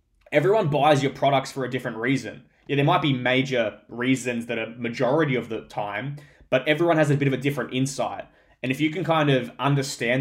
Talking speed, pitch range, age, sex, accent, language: 210 wpm, 120-145 Hz, 10-29, male, Australian, English